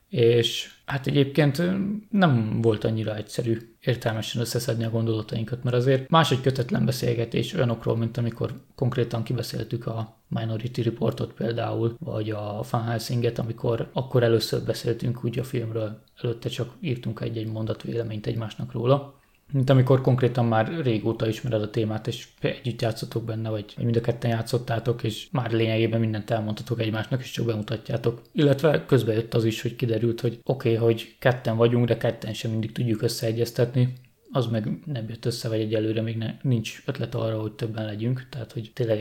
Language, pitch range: Hungarian, 110-125 Hz